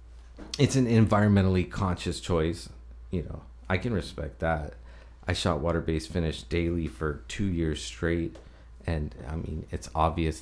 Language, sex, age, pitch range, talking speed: English, male, 30-49, 75-85 Hz, 145 wpm